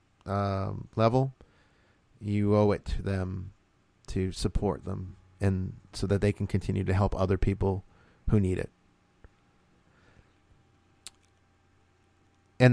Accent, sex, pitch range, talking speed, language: American, male, 95-115 Hz, 115 wpm, English